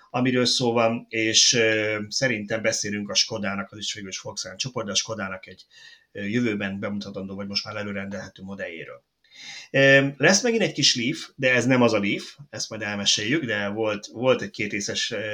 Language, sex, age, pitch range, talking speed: Hungarian, male, 30-49, 105-135 Hz, 160 wpm